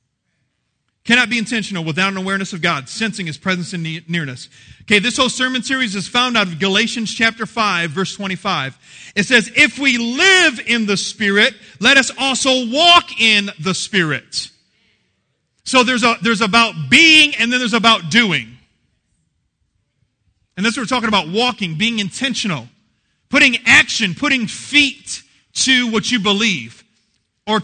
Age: 40-59